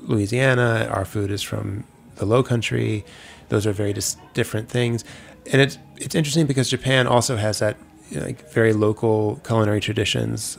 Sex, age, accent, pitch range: male, 30-49, American, 105-120 Hz